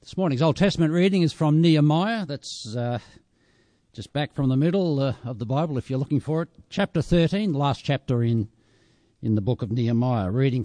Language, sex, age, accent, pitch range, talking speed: English, male, 60-79, Australian, 110-150 Hz, 205 wpm